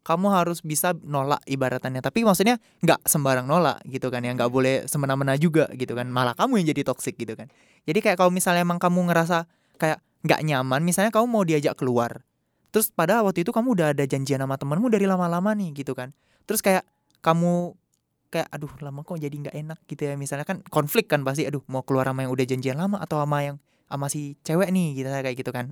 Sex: male